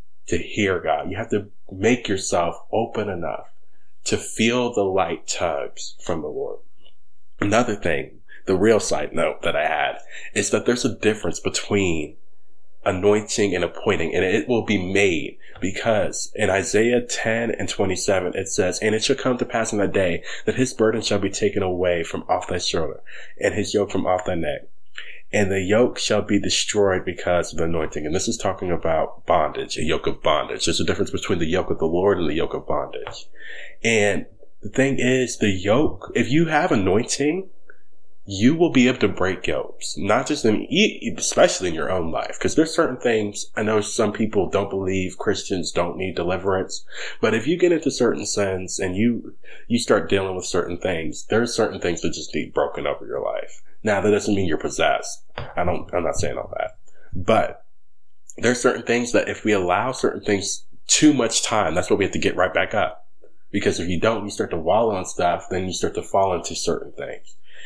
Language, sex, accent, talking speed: English, male, American, 200 wpm